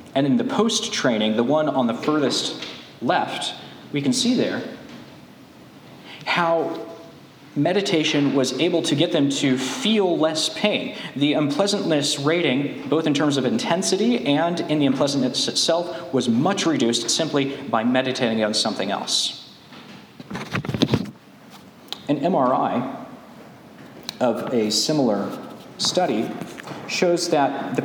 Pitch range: 135-185 Hz